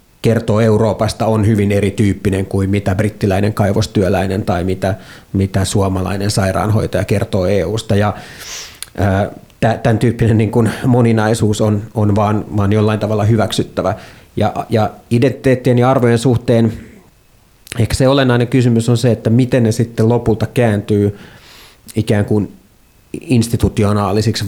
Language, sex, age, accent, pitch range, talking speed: Finnish, male, 30-49, native, 100-115 Hz, 125 wpm